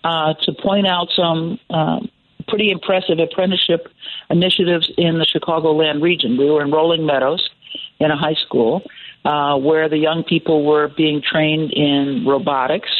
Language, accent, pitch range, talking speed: English, American, 150-180 Hz, 155 wpm